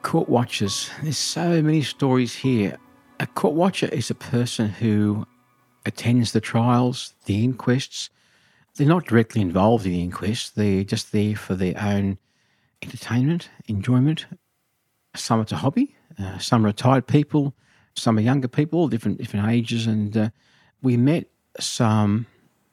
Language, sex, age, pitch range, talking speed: English, male, 60-79, 105-130 Hz, 145 wpm